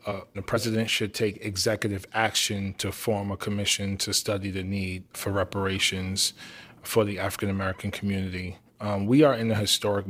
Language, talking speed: English, 160 wpm